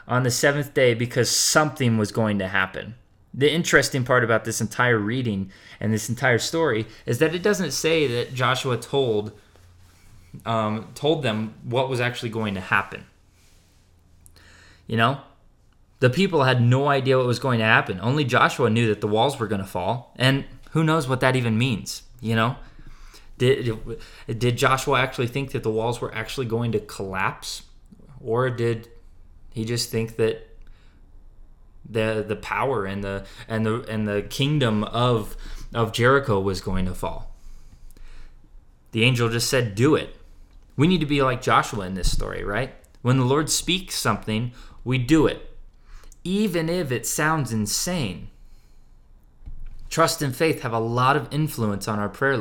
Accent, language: American, English